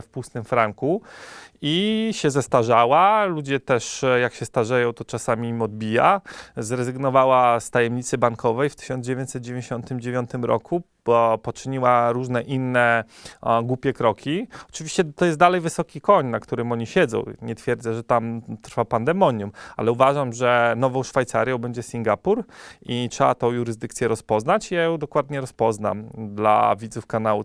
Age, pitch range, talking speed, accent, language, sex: 30-49, 115-145 Hz, 140 wpm, native, Polish, male